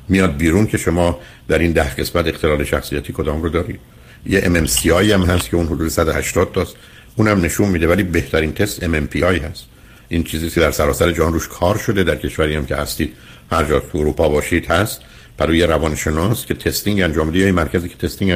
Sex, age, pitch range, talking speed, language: male, 60-79, 80-100 Hz, 205 wpm, Persian